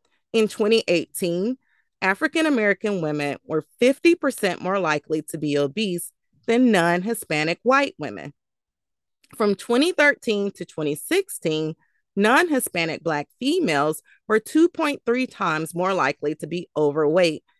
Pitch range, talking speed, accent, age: 160-230 Hz, 100 wpm, American, 30-49